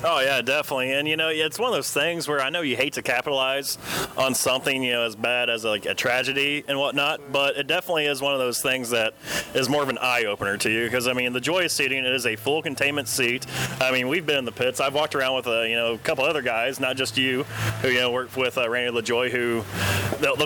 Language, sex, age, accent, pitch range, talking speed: English, male, 20-39, American, 125-155 Hz, 275 wpm